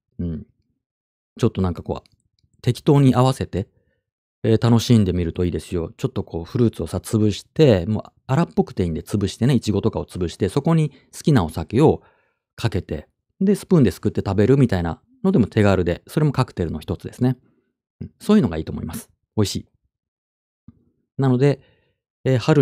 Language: Japanese